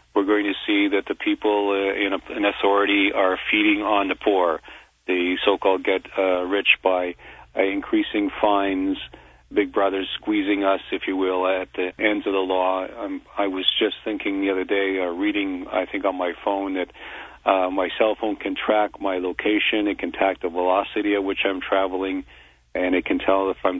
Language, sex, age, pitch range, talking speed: English, male, 40-59, 90-100 Hz, 195 wpm